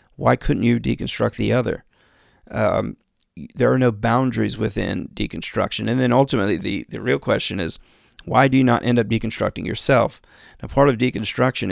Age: 40-59